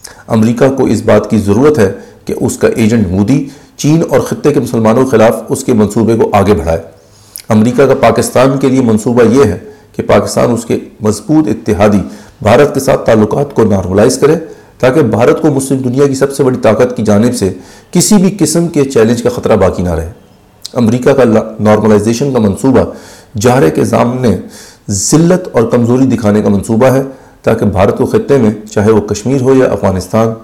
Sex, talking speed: male, 190 wpm